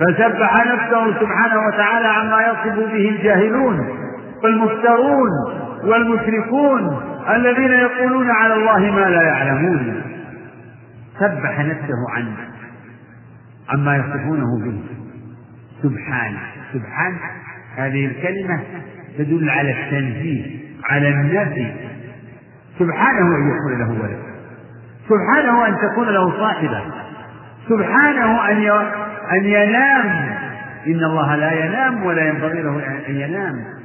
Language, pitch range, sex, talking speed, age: Arabic, 120-205 Hz, male, 100 wpm, 50-69